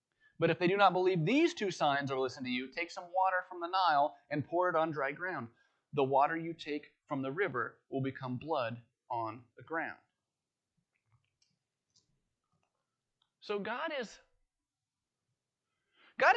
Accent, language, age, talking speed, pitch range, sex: American, English, 30-49, 155 wpm, 145-195 Hz, male